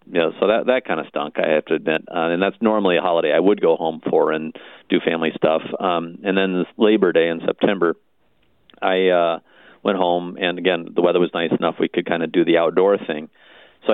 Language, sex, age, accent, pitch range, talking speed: English, male, 40-59, American, 85-100 Hz, 240 wpm